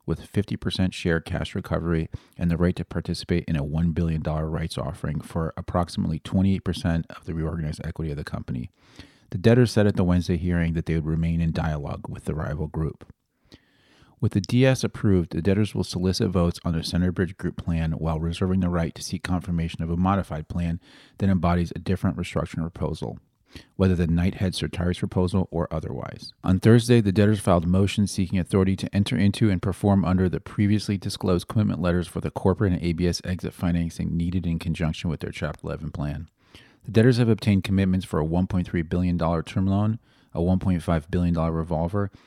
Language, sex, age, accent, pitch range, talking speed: English, male, 40-59, American, 80-95 Hz, 185 wpm